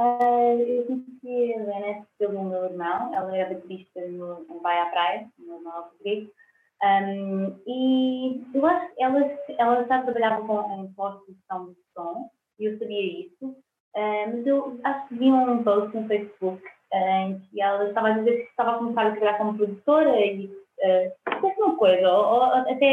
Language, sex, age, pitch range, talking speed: Portuguese, female, 20-39, 195-255 Hz, 160 wpm